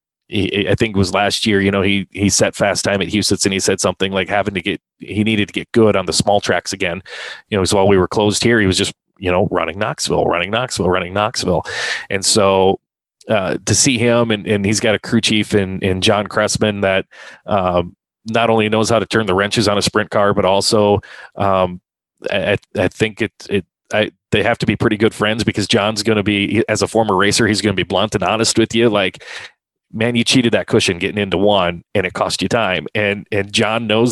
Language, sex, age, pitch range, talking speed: English, male, 30-49, 95-110 Hz, 240 wpm